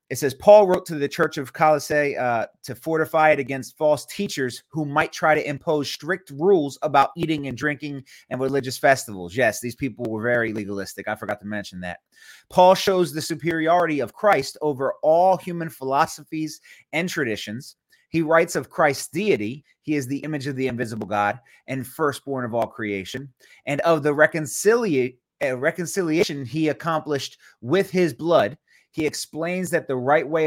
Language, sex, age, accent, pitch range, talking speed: English, male, 30-49, American, 120-160 Hz, 170 wpm